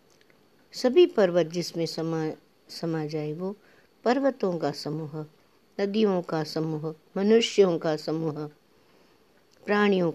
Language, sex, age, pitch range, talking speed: Hindi, female, 60-79, 160-230 Hz, 100 wpm